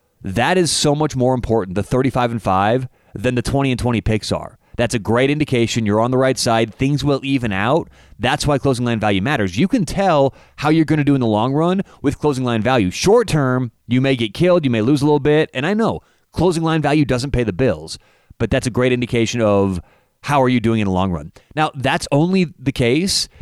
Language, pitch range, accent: English, 110-145 Hz, American